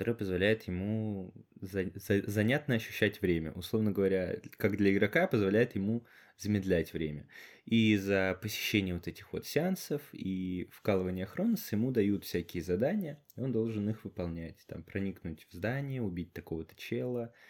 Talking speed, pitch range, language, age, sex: 135 wpm, 90-115 Hz, Russian, 20-39, male